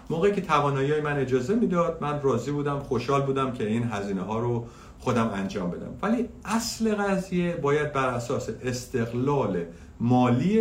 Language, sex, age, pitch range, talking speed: Persian, male, 50-69, 110-150 Hz, 155 wpm